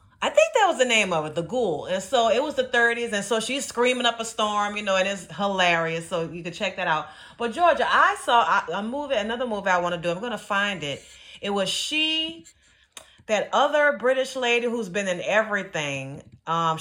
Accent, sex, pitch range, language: American, female, 170-235 Hz, English